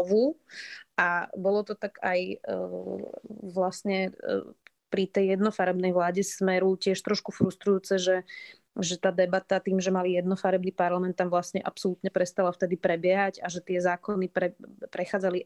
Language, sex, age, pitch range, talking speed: Slovak, female, 20-39, 180-200 Hz, 145 wpm